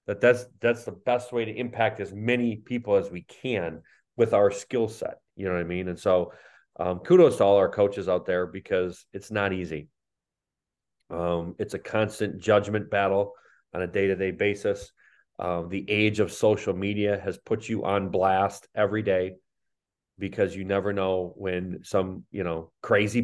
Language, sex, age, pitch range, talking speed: English, male, 30-49, 95-115 Hz, 180 wpm